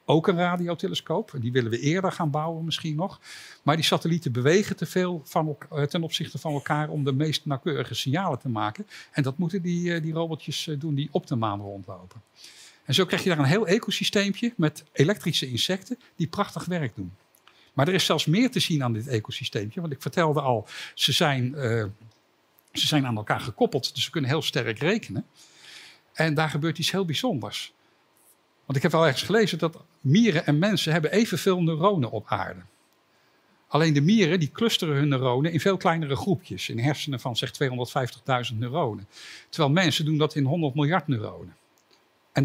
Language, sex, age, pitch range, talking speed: Dutch, male, 60-79, 135-180 Hz, 185 wpm